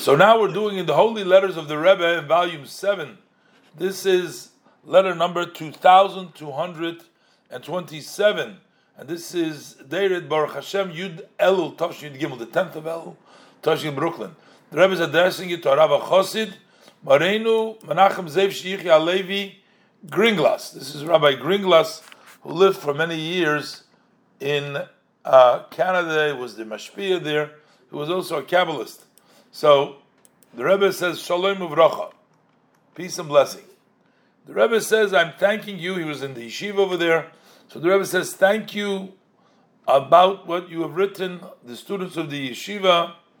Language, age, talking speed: English, 50-69, 160 wpm